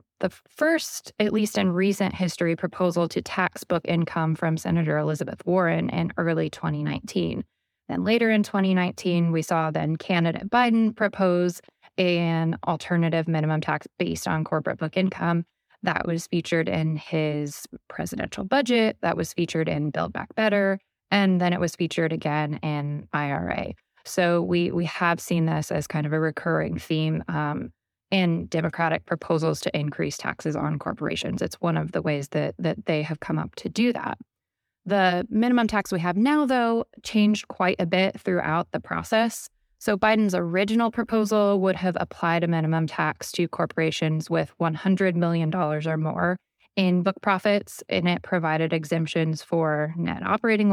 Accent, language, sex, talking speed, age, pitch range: American, English, female, 160 wpm, 10-29, 160-190 Hz